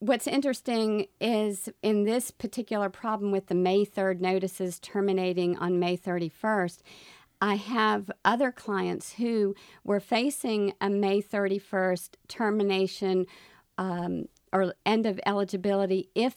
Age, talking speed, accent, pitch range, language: 50-69, 120 wpm, American, 185-215 Hz, English